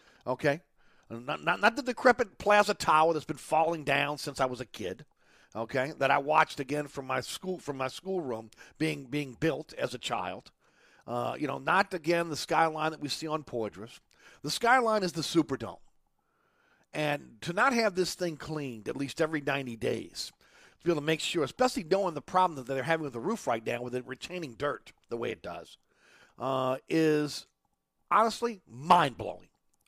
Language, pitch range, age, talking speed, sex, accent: English, 130-175 Hz, 50-69, 190 wpm, male, American